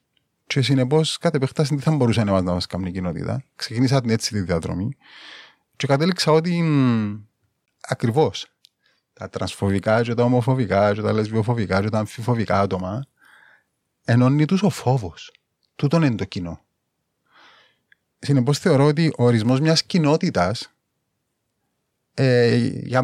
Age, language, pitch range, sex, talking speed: 30-49, Greek, 105-140 Hz, male, 120 wpm